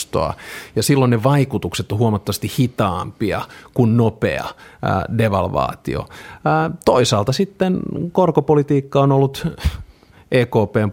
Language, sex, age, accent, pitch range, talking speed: Finnish, male, 30-49, native, 100-130 Hz, 90 wpm